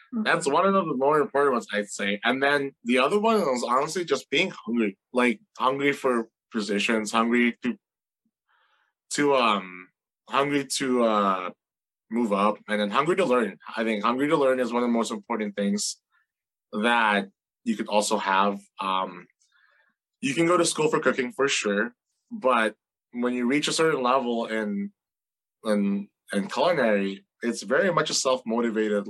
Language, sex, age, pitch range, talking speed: English, male, 20-39, 105-130 Hz, 165 wpm